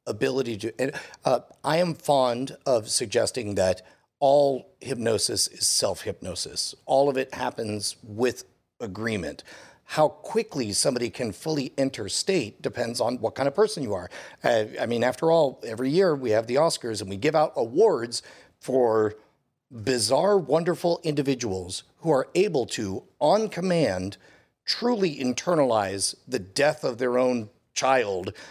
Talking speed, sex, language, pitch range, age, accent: 145 wpm, male, English, 120-165 Hz, 50-69, American